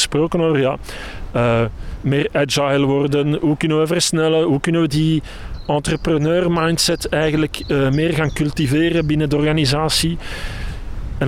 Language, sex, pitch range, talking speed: English, male, 130-165 Hz, 140 wpm